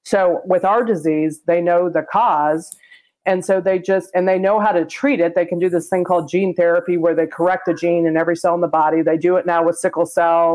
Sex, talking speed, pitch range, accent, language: female, 255 wpm, 160-185 Hz, American, English